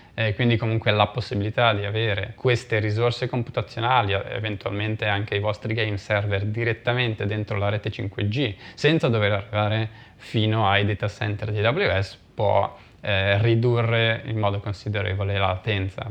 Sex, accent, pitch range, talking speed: male, native, 100-115 Hz, 140 wpm